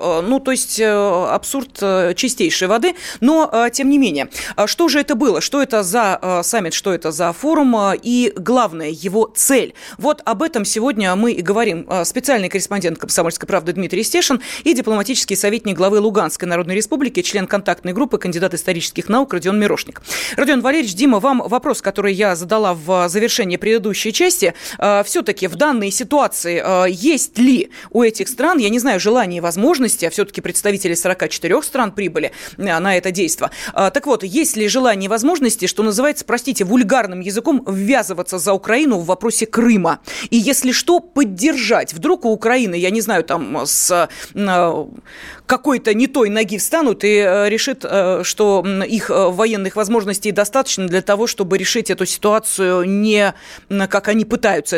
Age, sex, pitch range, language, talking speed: 30-49, female, 190-250 Hz, Russian, 155 wpm